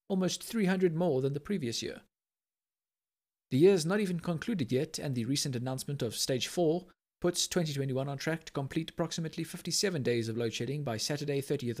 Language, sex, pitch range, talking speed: English, male, 125-170 Hz, 185 wpm